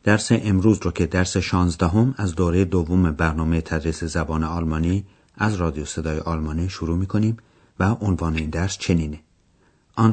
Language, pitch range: Persian, 85-110 Hz